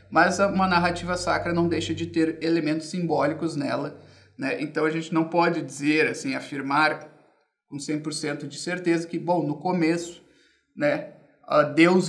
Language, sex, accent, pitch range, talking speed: Portuguese, male, Brazilian, 155-185 Hz, 150 wpm